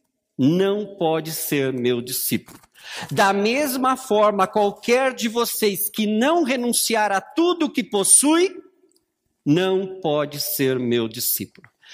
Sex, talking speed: male, 120 wpm